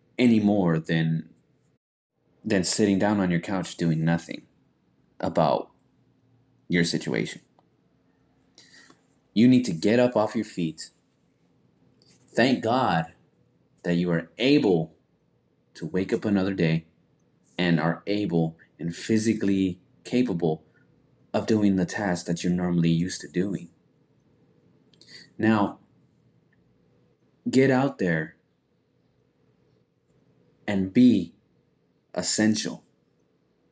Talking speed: 100 wpm